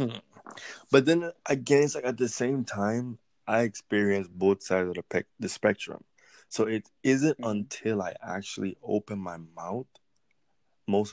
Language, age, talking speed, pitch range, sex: English, 20-39, 150 wpm, 95-105 Hz, male